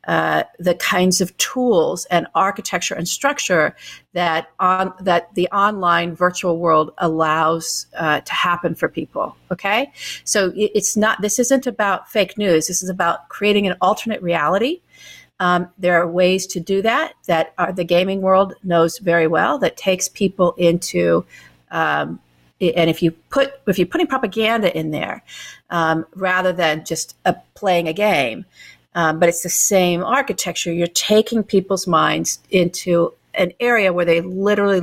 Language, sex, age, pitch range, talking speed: English, female, 50-69, 170-210 Hz, 160 wpm